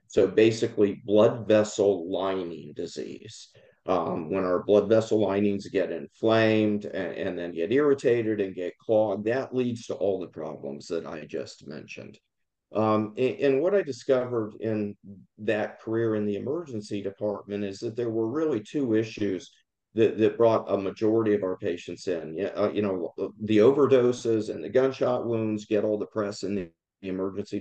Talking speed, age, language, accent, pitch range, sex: 165 wpm, 50-69, English, American, 100-125 Hz, male